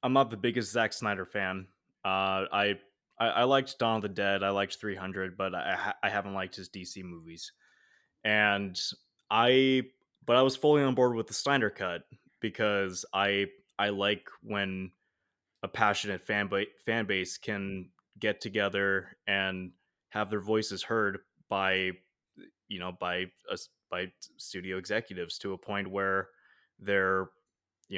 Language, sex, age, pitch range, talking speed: English, male, 20-39, 95-110 Hz, 155 wpm